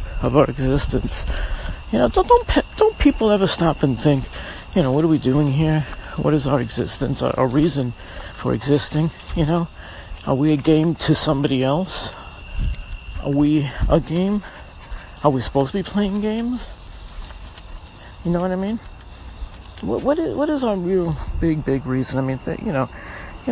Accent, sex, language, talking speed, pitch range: American, male, English, 180 wpm, 115-170 Hz